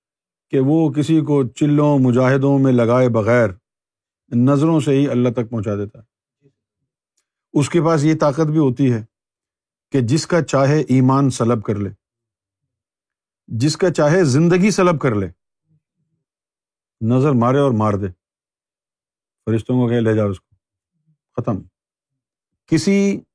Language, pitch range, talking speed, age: Urdu, 115-155 Hz, 135 wpm, 50-69